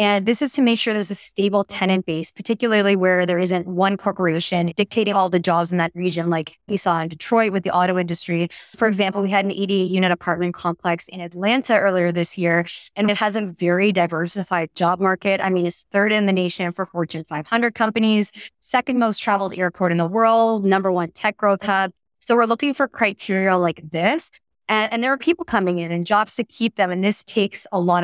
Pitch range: 175-215 Hz